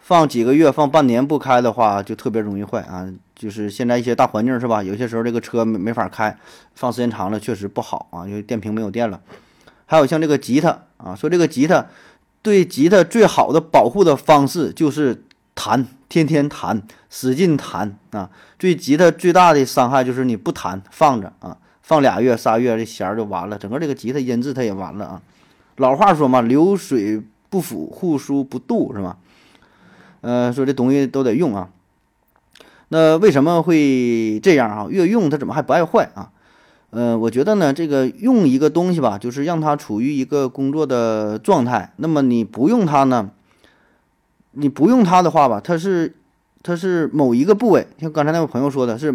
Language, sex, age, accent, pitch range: Chinese, male, 20-39, native, 110-160 Hz